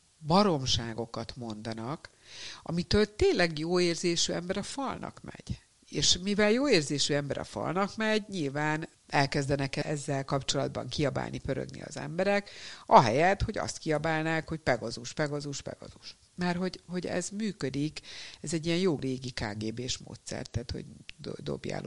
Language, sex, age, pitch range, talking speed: Hungarian, female, 60-79, 125-170 Hz, 135 wpm